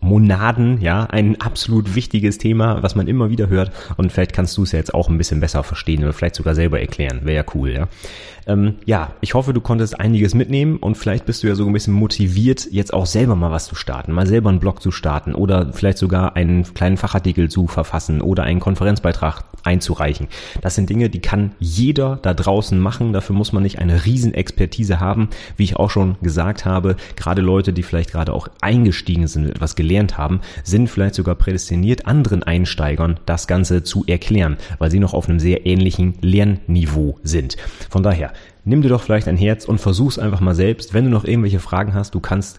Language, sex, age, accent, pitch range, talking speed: German, male, 30-49, German, 85-105 Hz, 205 wpm